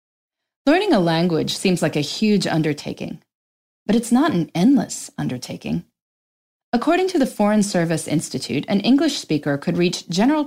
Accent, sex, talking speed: American, female, 150 wpm